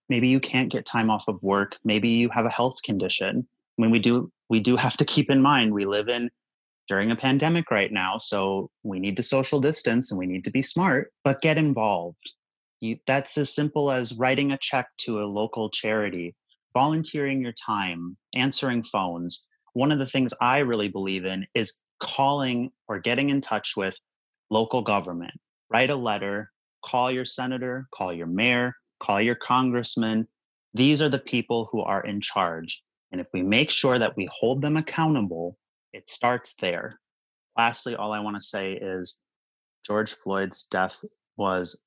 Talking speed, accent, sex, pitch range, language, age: 180 wpm, American, male, 95-125 Hz, English, 30-49